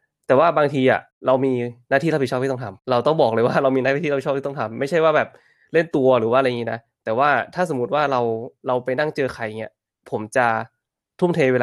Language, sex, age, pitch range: Thai, male, 20-39, 115-135 Hz